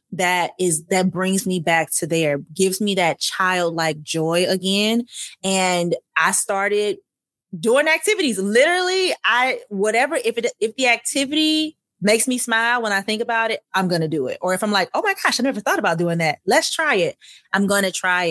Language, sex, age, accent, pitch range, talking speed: English, female, 20-39, American, 165-210 Hz, 195 wpm